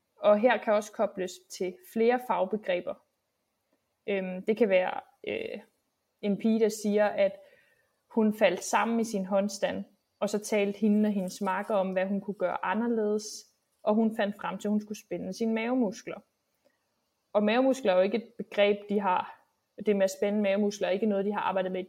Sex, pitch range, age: female, 195-225 Hz, 20-39